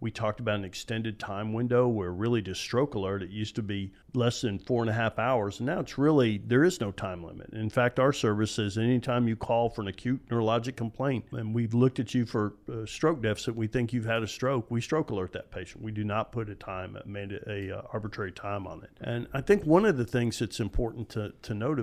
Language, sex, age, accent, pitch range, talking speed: English, male, 50-69, American, 100-125 Hz, 240 wpm